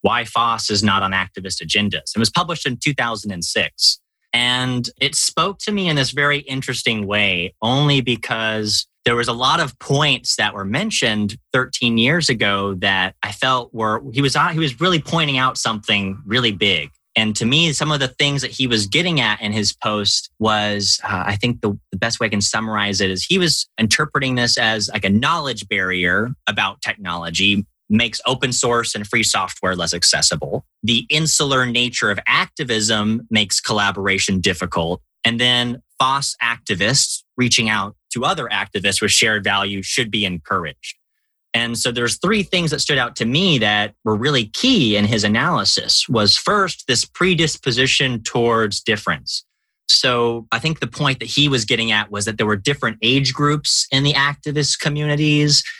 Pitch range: 105-140 Hz